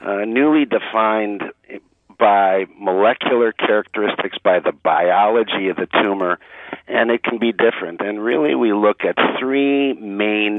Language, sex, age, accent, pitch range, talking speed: English, male, 50-69, American, 95-115 Hz, 135 wpm